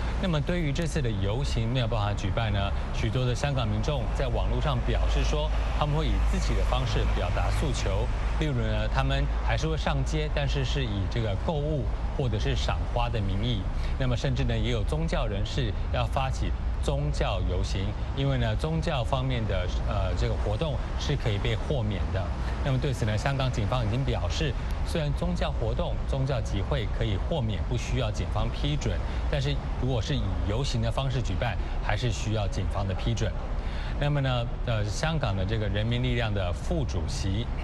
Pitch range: 90-130 Hz